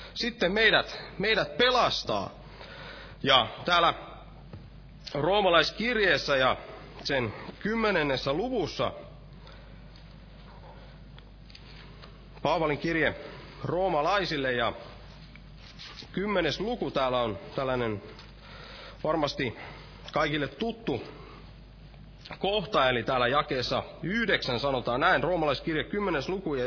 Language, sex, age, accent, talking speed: Finnish, male, 30-49, native, 75 wpm